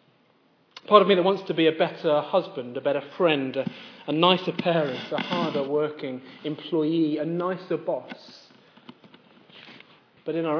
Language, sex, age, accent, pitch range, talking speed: English, male, 30-49, British, 150-195 Hz, 155 wpm